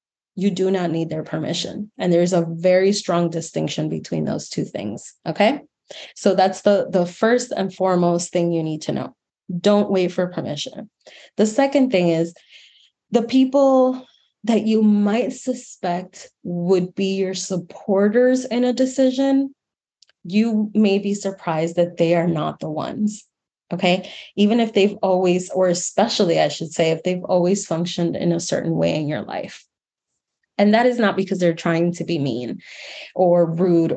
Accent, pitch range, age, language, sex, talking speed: American, 170-205 Hz, 20-39, English, female, 165 wpm